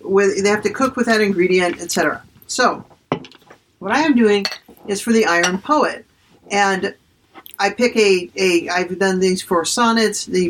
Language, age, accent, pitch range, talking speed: English, 50-69, American, 180-230 Hz, 165 wpm